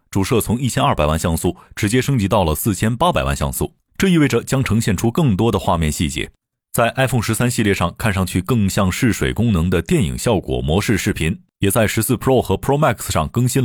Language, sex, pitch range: Chinese, male, 95-130 Hz